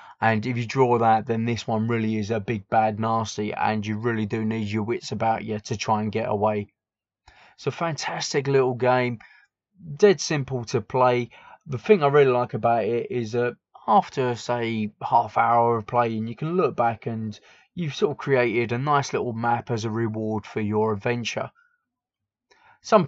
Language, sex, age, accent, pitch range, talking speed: English, male, 20-39, British, 110-140 Hz, 185 wpm